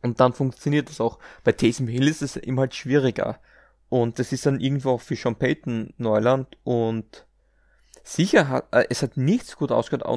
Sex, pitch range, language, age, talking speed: male, 115-140 Hz, German, 20-39, 185 wpm